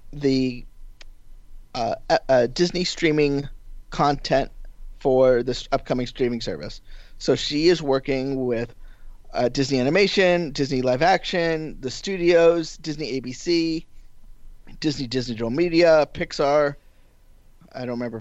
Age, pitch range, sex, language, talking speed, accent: 20-39, 120-150 Hz, male, English, 110 wpm, American